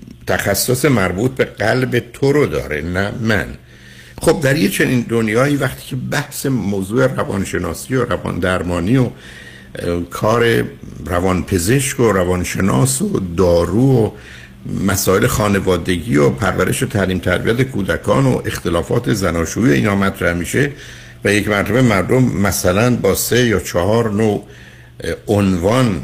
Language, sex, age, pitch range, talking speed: Persian, male, 60-79, 85-115 Hz, 125 wpm